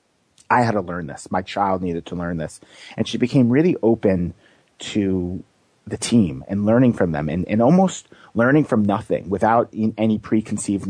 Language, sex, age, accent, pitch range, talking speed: English, male, 30-49, American, 95-130 Hz, 175 wpm